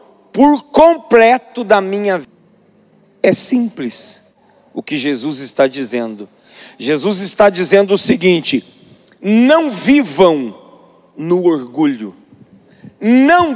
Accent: Brazilian